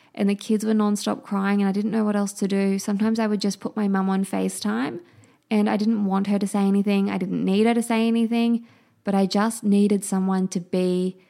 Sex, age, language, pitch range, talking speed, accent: female, 20-39, English, 190-220 Hz, 240 wpm, Australian